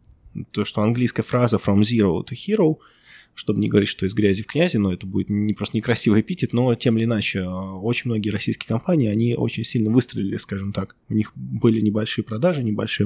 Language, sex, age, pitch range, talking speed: Russian, male, 20-39, 105-120 Hz, 200 wpm